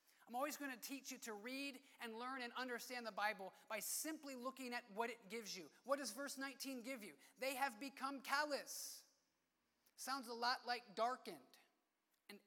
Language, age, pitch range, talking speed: English, 30-49, 210-260 Hz, 185 wpm